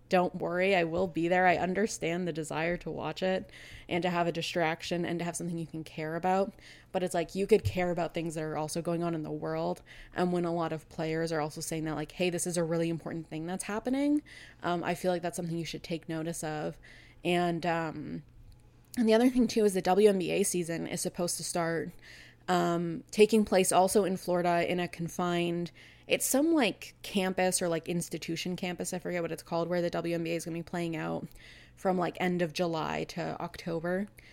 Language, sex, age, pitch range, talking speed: English, female, 20-39, 160-180 Hz, 220 wpm